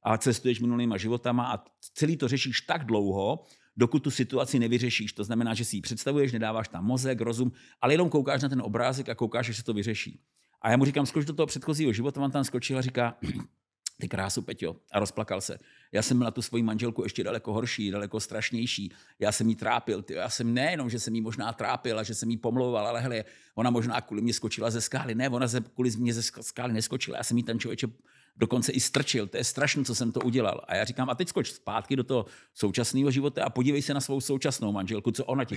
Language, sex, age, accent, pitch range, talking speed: Czech, male, 50-69, native, 115-135 Hz, 230 wpm